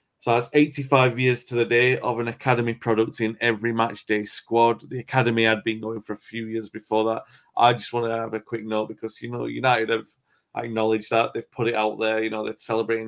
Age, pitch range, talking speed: 30-49, 110-125 Hz, 235 wpm